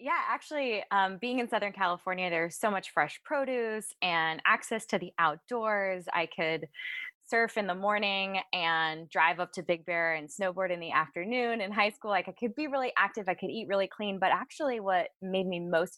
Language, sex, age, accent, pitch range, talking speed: English, female, 20-39, American, 175-210 Hz, 205 wpm